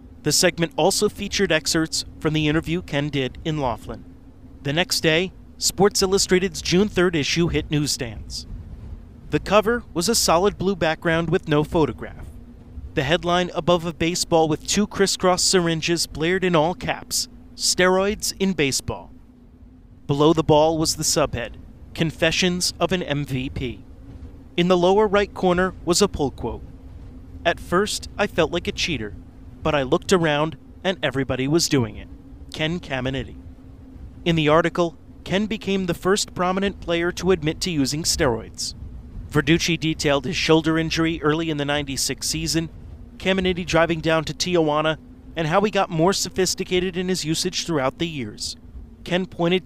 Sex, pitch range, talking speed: male, 135-180 Hz, 155 wpm